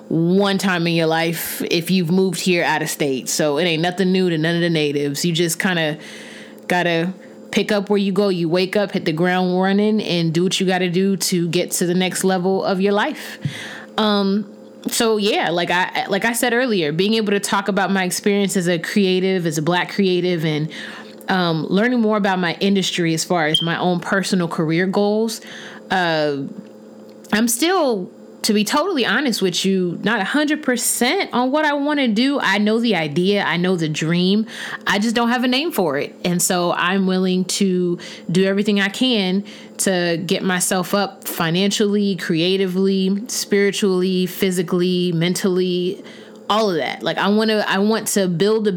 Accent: American